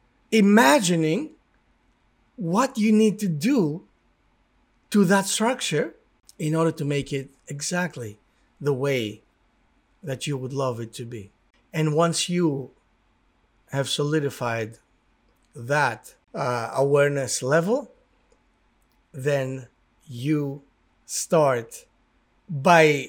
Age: 50-69